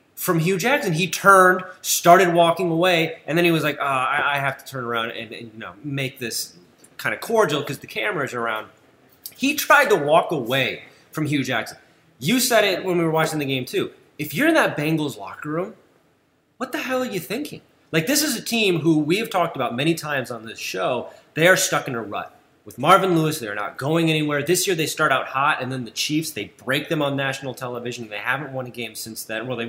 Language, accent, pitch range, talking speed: English, American, 130-180 Hz, 235 wpm